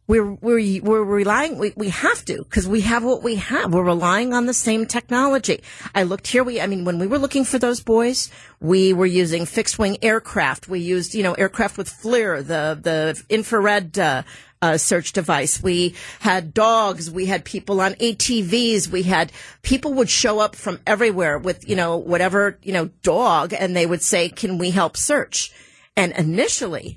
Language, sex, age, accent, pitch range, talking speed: English, female, 50-69, American, 175-220 Hz, 190 wpm